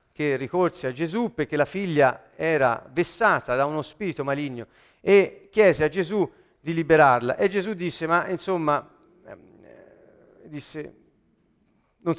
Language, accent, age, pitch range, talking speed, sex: Italian, native, 50-69, 135-190 Hz, 130 wpm, male